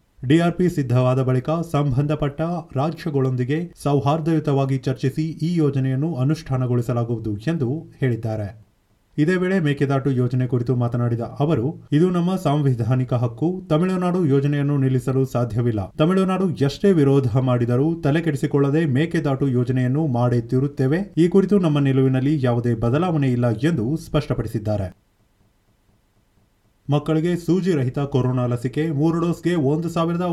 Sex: male